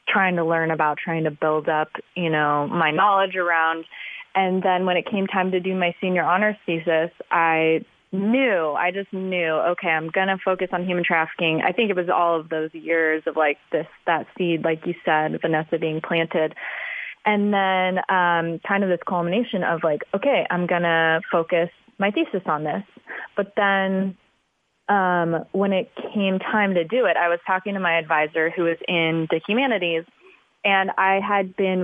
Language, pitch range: English, 165-190 Hz